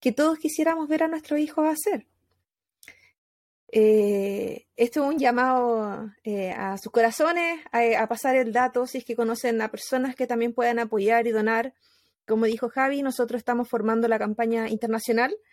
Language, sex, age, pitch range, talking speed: Spanish, female, 30-49, 225-290 Hz, 165 wpm